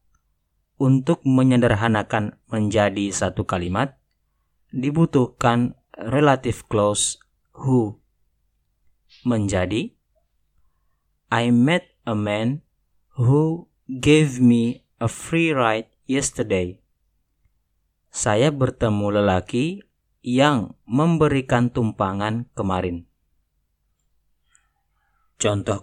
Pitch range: 85-130 Hz